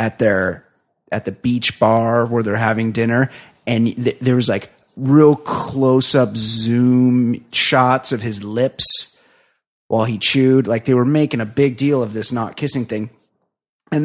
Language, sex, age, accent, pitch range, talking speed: English, male, 30-49, American, 115-145 Hz, 160 wpm